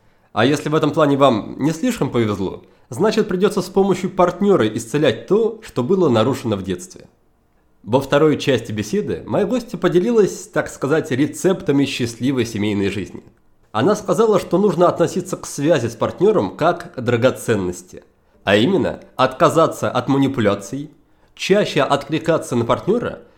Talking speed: 140 wpm